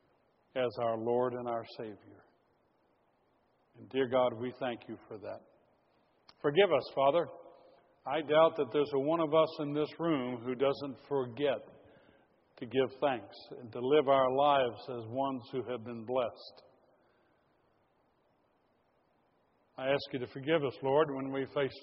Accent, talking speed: American, 150 wpm